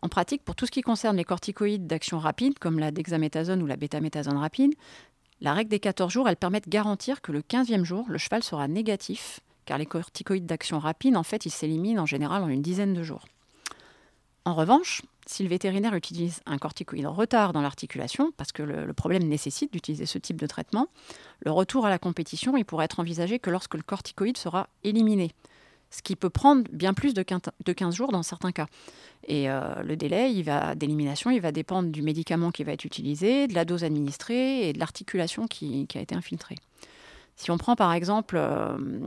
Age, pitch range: 30-49, 155-215 Hz